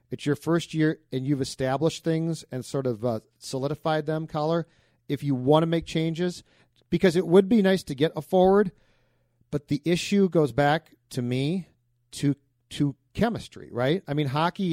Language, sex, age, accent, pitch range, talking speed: English, male, 40-59, American, 130-160 Hz, 180 wpm